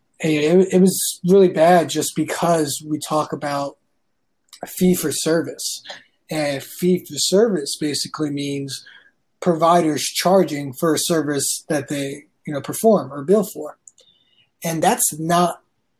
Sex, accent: male, American